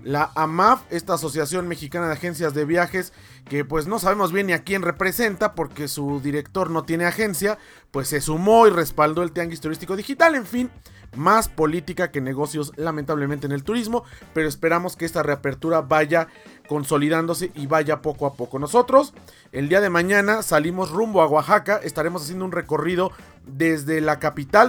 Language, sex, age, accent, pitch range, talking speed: Spanish, male, 40-59, Mexican, 150-185 Hz, 175 wpm